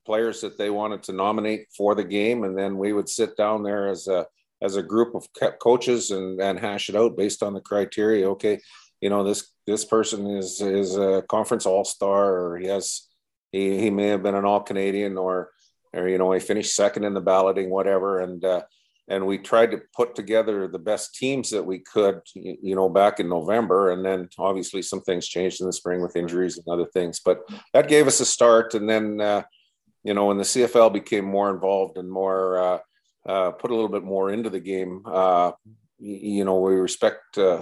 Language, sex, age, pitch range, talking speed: English, male, 50-69, 95-105 Hz, 215 wpm